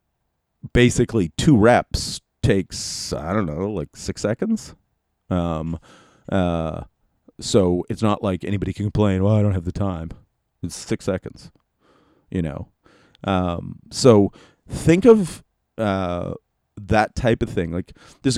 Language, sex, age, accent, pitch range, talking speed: English, male, 40-59, American, 90-120 Hz, 135 wpm